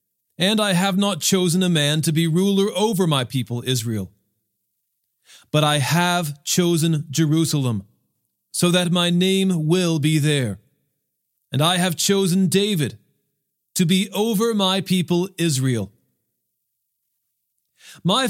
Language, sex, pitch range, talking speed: English, male, 145-195 Hz, 125 wpm